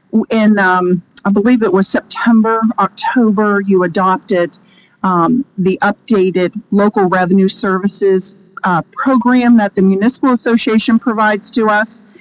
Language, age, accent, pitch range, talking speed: English, 40-59, American, 185-225 Hz, 125 wpm